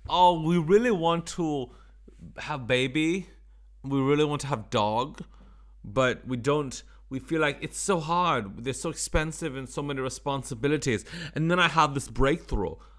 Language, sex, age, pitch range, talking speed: English, male, 30-49, 110-145 Hz, 160 wpm